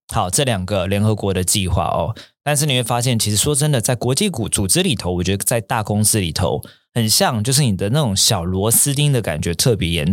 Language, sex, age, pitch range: Chinese, male, 20-39, 95-130 Hz